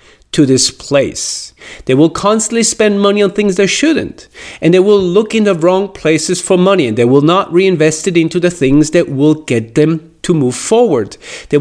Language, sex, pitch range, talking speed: English, male, 150-200 Hz, 200 wpm